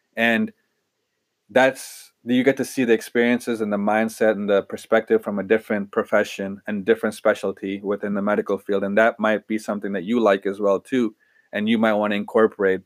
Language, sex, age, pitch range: English, male, 30-49, 105-115 Hz